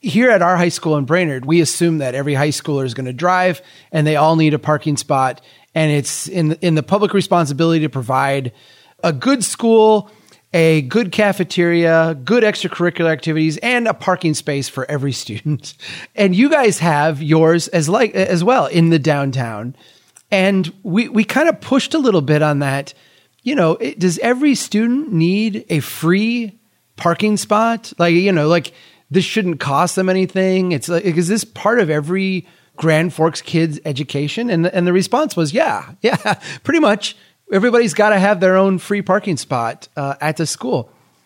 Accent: American